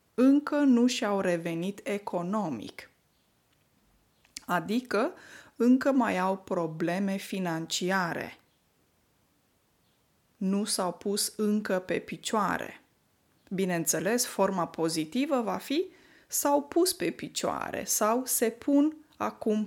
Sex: female